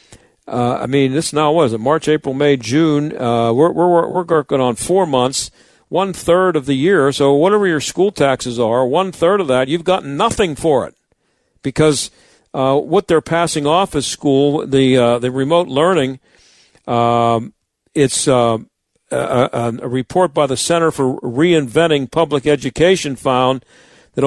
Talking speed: 160 wpm